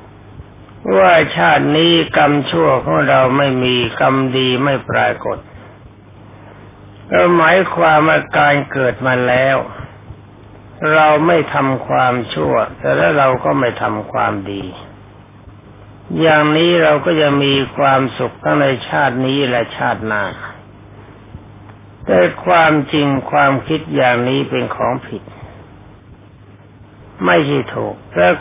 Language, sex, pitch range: Thai, male, 105-140 Hz